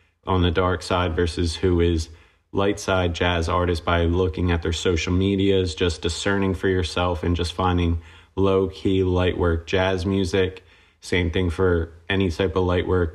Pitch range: 85-95 Hz